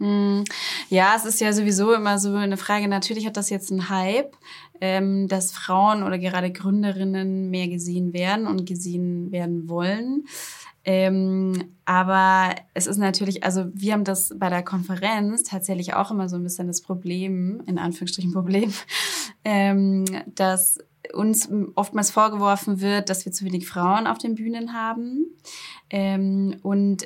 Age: 20-39